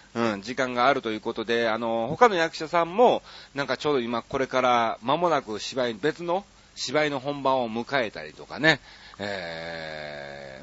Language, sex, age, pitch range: Japanese, male, 40-59, 105-150 Hz